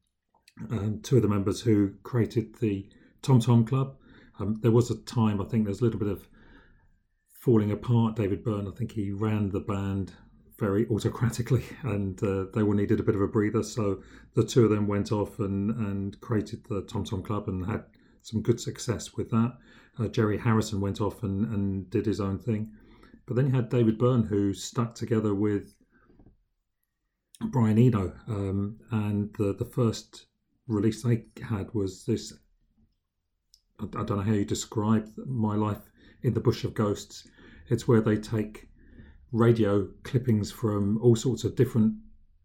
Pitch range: 100-115 Hz